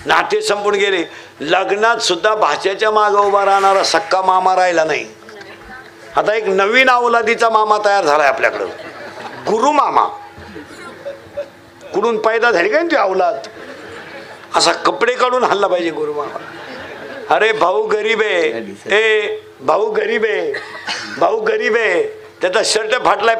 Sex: male